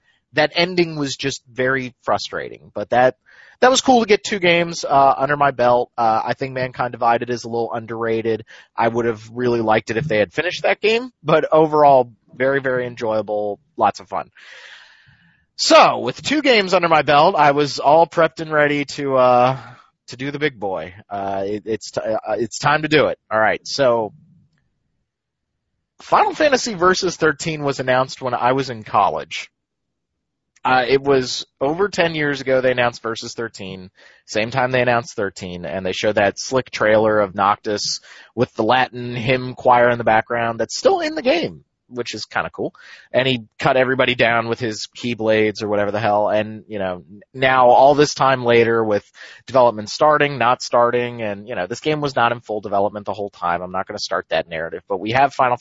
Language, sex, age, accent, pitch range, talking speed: English, male, 30-49, American, 110-145 Hz, 195 wpm